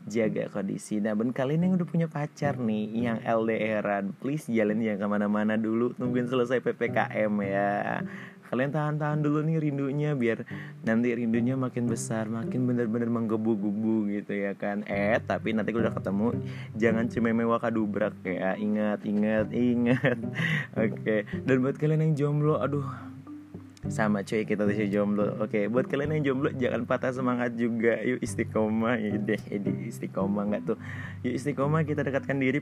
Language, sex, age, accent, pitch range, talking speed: Indonesian, male, 20-39, native, 105-130 Hz, 155 wpm